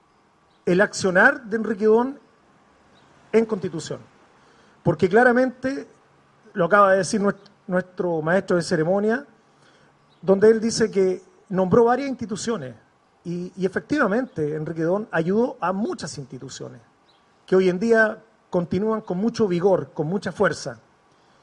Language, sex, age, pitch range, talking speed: Spanish, male, 40-59, 170-220 Hz, 125 wpm